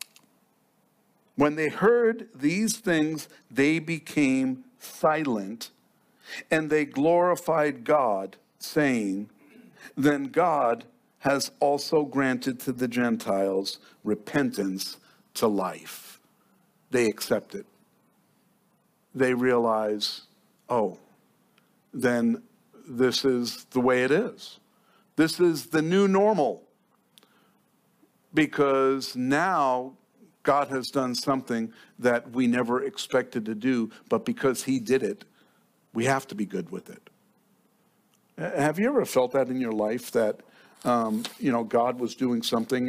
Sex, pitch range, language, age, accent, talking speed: male, 130-210 Hz, English, 50-69, American, 115 wpm